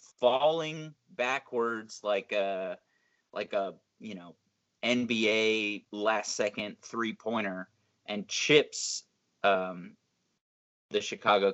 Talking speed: 95 wpm